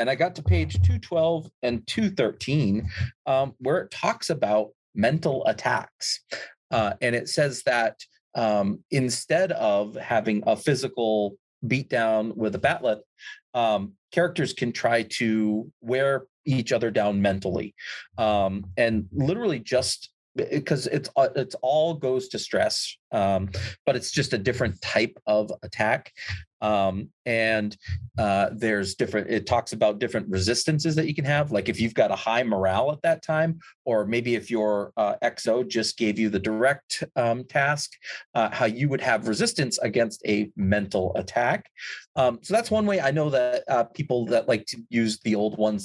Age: 30-49